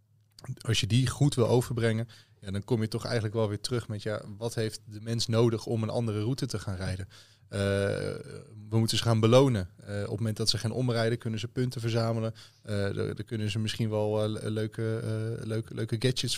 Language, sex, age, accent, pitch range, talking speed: Dutch, male, 20-39, Dutch, 105-115 Hz, 205 wpm